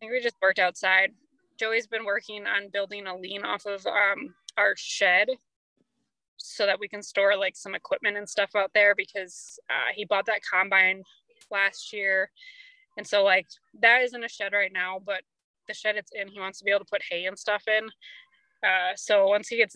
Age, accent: 20-39, American